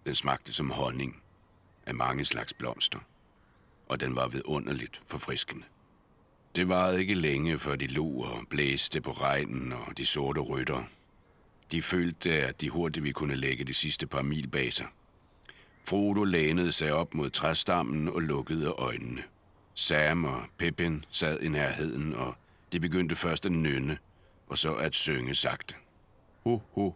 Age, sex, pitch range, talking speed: 60-79, male, 70-85 Hz, 155 wpm